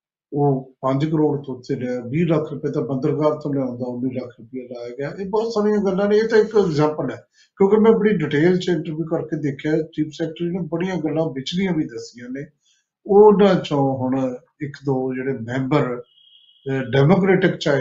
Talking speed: 140 wpm